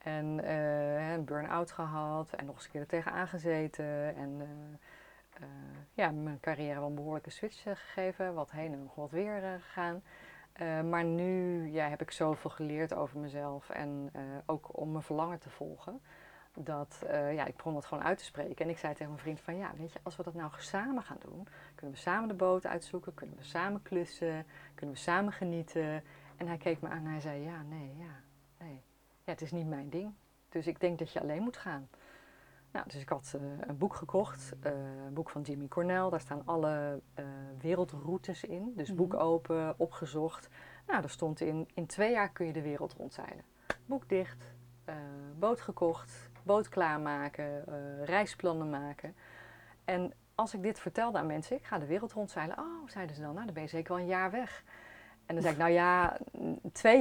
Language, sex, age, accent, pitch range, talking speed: Dutch, female, 30-49, Dutch, 145-180 Hz, 200 wpm